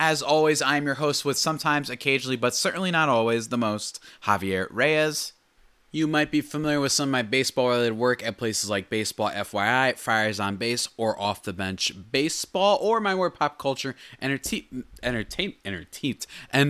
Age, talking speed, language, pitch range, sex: 20-39, 170 wpm, English, 105-145 Hz, male